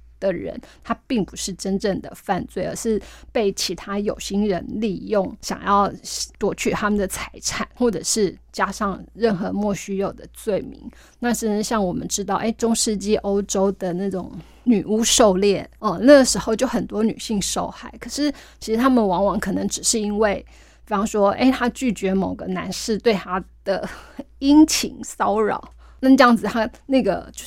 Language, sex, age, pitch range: Chinese, female, 20-39, 190-225 Hz